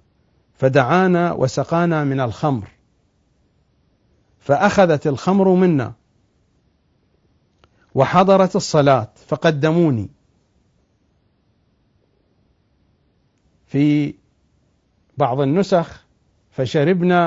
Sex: male